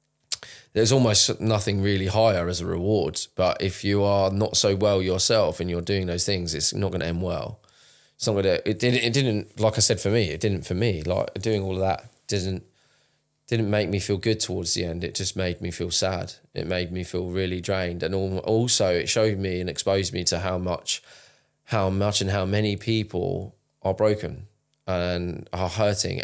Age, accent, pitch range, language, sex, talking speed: 20-39, British, 90-110 Hz, English, male, 205 wpm